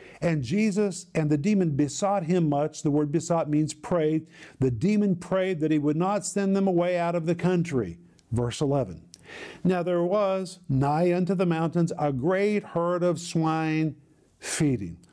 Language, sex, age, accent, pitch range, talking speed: English, male, 50-69, American, 140-180 Hz, 165 wpm